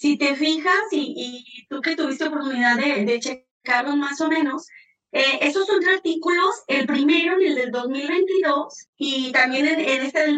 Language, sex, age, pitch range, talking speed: Spanish, female, 30-49, 250-320 Hz, 185 wpm